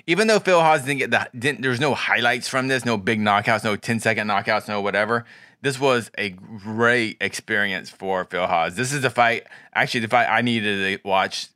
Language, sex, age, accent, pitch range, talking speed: English, male, 20-39, American, 100-120 Hz, 200 wpm